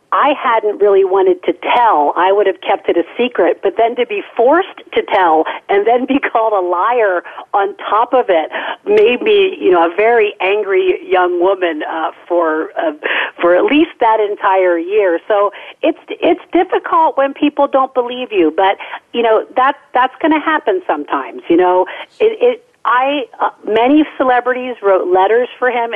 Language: English